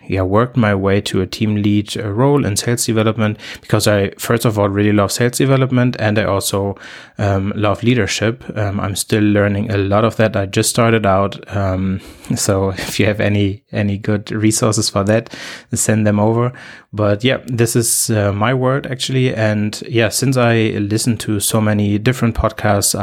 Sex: male